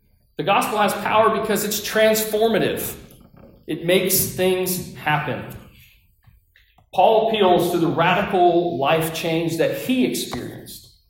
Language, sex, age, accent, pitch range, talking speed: English, male, 30-49, American, 135-195 Hz, 115 wpm